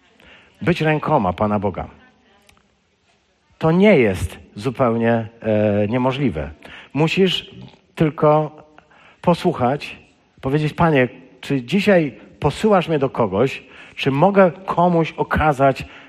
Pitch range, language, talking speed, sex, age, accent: 125-180 Hz, Polish, 90 wpm, male, 50-69, native